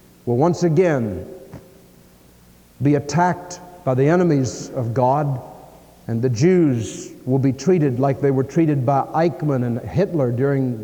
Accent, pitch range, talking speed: American, 120-155 Hz, 140 wpm